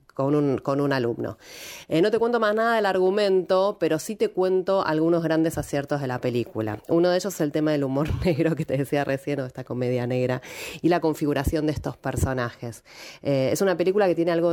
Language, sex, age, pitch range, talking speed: Spanish, female, 30-49, 140-180 Hz, 215 wpm